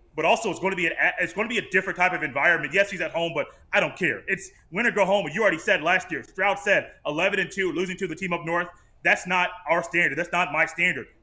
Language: English